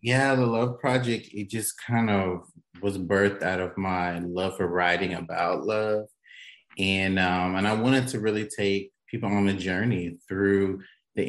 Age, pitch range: 30-49, 90-110 Hz